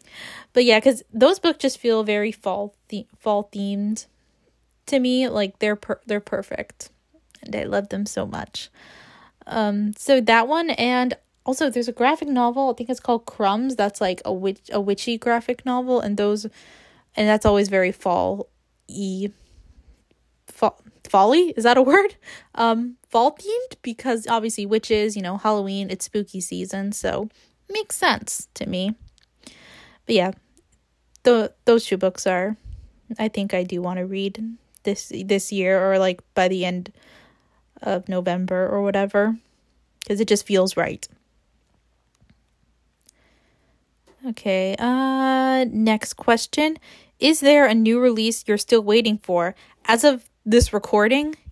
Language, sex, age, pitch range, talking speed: English, female, 10-29, 200-250 Hz, 145 wpm